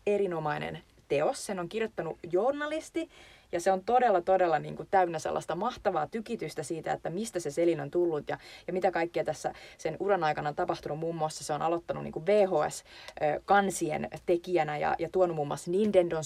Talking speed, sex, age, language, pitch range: 175 wpm, female, 30-49, Finnish, 155-190 Hz